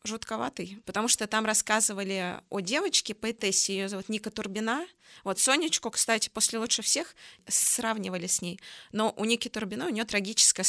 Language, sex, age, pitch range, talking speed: Russian, female, 20-39, 200-235 Hz, 155 wpm